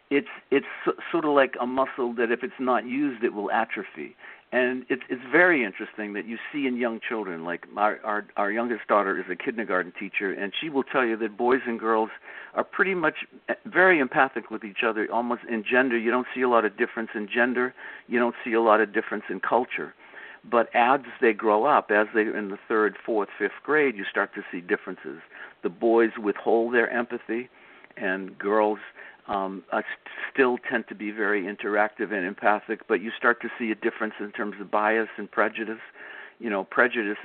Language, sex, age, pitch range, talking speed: English, male, 50-69, 105-120 Hz, 200 wpm